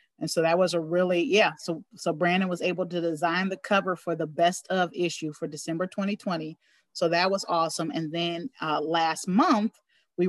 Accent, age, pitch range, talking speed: American, 40-59, 165-200 Hz, 200 wpm